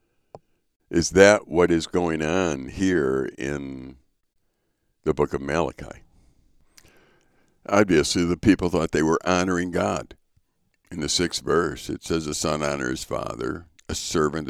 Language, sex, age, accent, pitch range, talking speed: English, male, 60-79, American, 70-90 Hz, 130 wpm